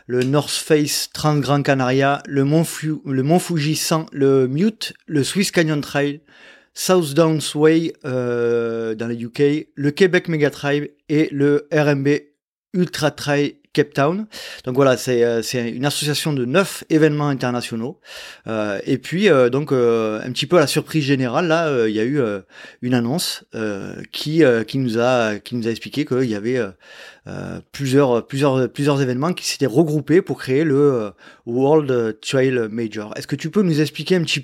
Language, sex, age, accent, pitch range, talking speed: French, male, 30-49, French, 125-155 Hz, 175 wpm